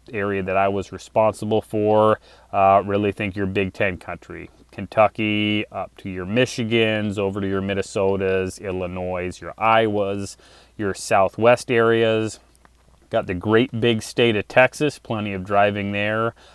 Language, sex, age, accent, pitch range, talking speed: English, male, 30-49, American, 95-115 Hz, 140 wpm